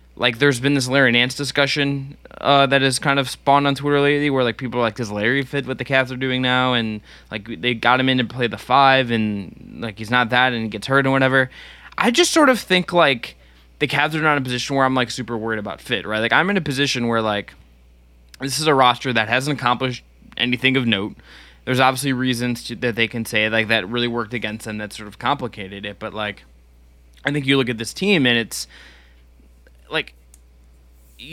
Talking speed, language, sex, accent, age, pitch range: 230 wpm, English, male, American, 20-39, 110-135 Hz